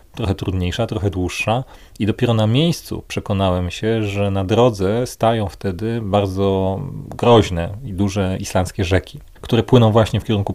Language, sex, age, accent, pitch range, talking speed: Polish, male, 40-59, native, 95-110 Hz, 150 wpm